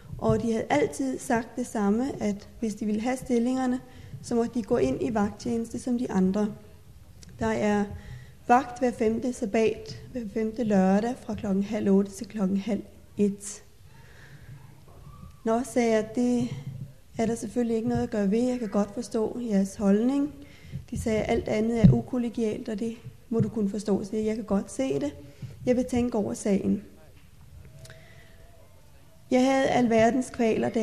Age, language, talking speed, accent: 30-49, Danish, 170 wpm, native